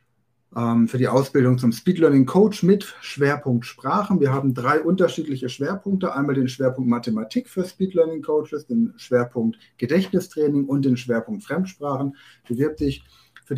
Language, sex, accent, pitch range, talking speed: German, male, German, 125-165 Hz, 135 wpm